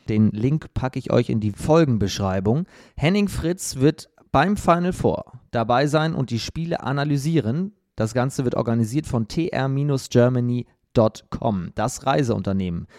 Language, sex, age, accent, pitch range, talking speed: German, male, 30-49, German, 115-155 Hz, 130 wpm